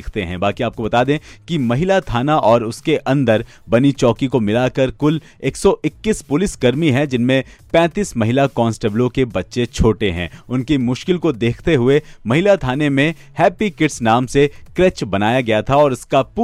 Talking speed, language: 100 wpm, Hindi